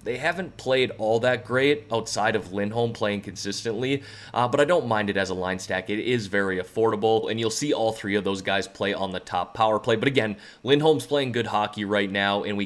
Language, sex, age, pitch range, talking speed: English, male, 30-49, 100-120 Hz, 230 wpm